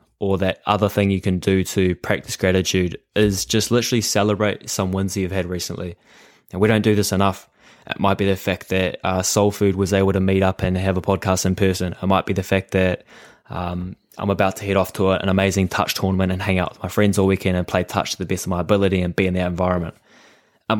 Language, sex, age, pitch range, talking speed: English, male, 20-39, 95-110 Hz, 245 wpm